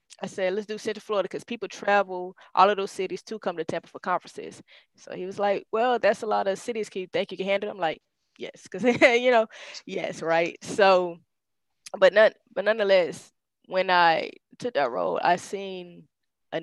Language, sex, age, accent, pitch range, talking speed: English, female, 20-39, American, 165-195 Hz, 200 wpm